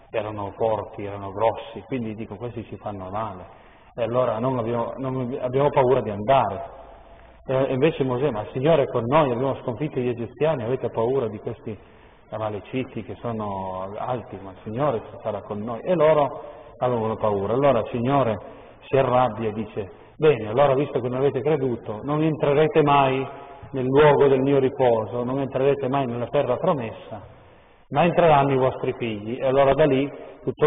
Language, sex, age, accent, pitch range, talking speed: Italian, male, 40-59, native, 115-145 Hz, 170 wpm